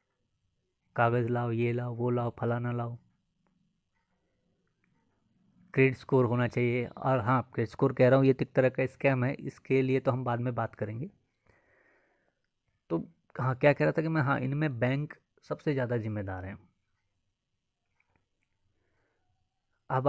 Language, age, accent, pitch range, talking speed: Hindi, 20-39, native, 115-135 Hz, 145 wpm